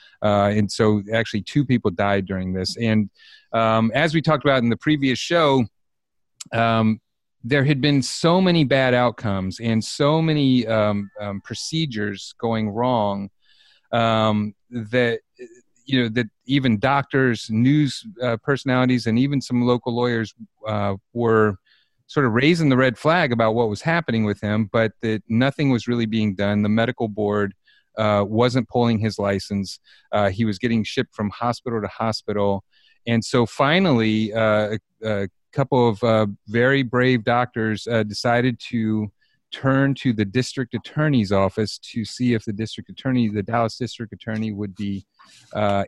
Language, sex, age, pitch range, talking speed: English, male, 30-49, 105-125 Hz, 160 wpm